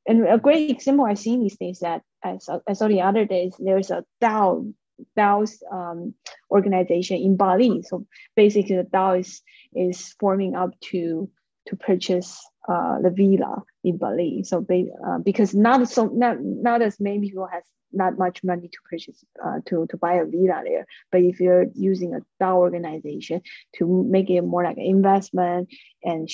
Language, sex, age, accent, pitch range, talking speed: English, female, 20-39, Chinese, 175-210 Hz, 180 wpm